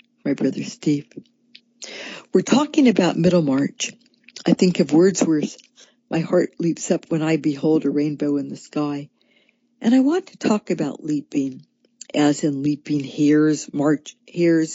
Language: English